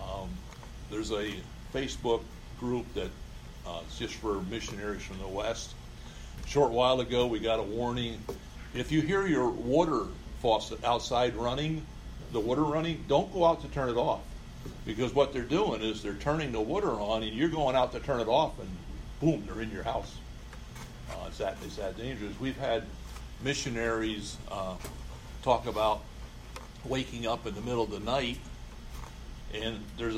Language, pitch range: English, 105-140 Hz